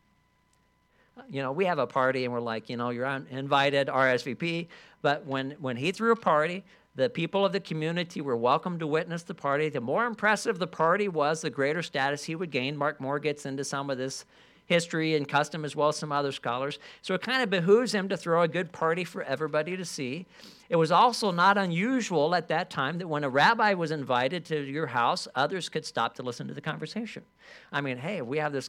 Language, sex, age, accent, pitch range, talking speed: English, male, 50-69, American, 135-170 Hz, 225 wpm